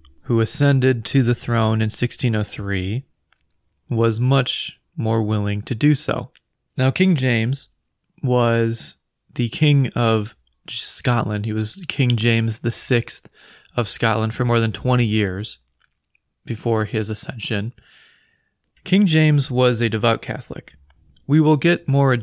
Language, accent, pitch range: English, American, 105-125 Hz